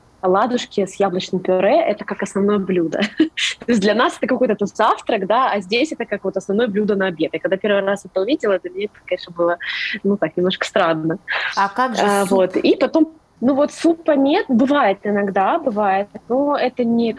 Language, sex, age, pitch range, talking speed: Russian, female, 20-39, 180-225 Hz, 190 wpm